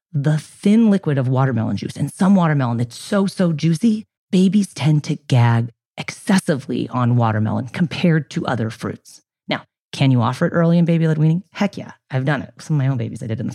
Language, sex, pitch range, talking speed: English, female, 120-165 Hz, 215 wpm